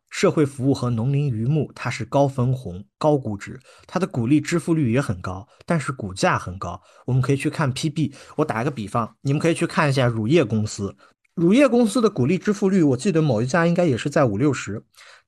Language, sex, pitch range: Chinese, male, 115-170 Hz